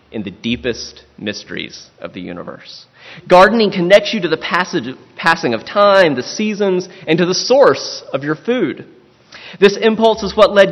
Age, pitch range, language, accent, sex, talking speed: 30-49, 115-185 Hz, English, American, male, 160 wpm